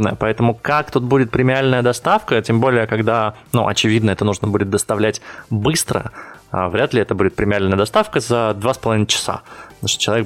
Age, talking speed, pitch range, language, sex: 20-39, 170 wpm, 105-130 Hz, Russian, male